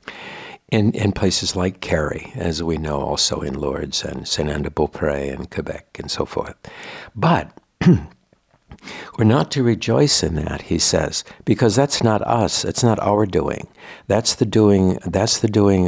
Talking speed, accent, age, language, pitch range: 165 wpm, American, 60-79, English, 85-100 Hz